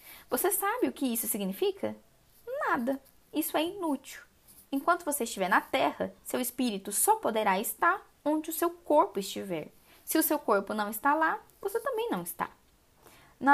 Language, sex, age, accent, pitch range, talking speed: Portuguese, female, 10-29, Brazilian, 205-290 Hz, 165 wpm